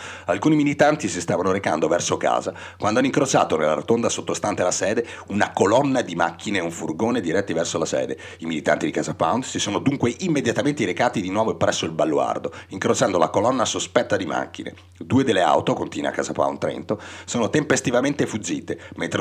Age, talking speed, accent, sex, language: 30-49, 185 wpm, native, male, Italian